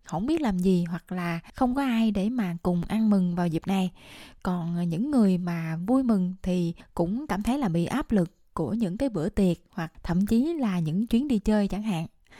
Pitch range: 180-225 Hz